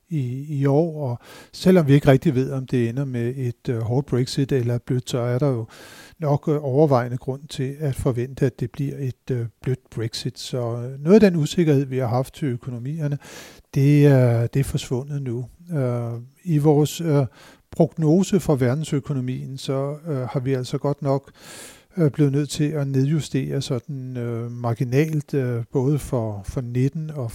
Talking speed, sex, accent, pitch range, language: 170 wpm, male, native, 125-145 Hz, Danish